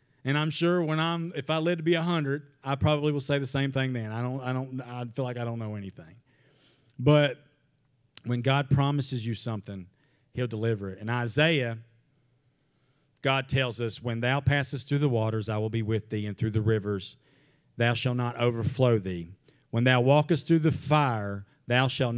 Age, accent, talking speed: 40-59, American, 200 wpm